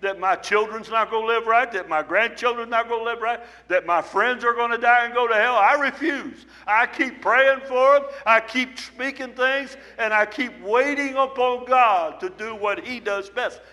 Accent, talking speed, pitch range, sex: American, 220 wpm, 190-255 Hz, male